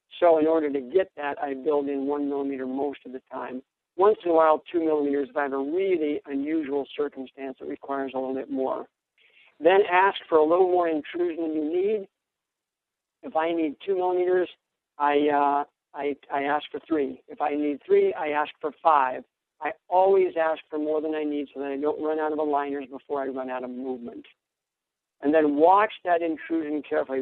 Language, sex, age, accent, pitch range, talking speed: English, male, 60-79, American, 145-170 Hz, 205 wpm